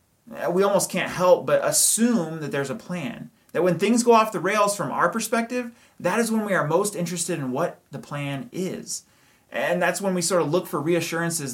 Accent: American